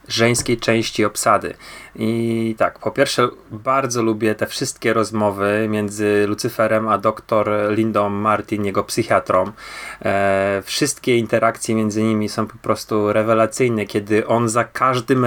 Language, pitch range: Polish, 105-135 Hz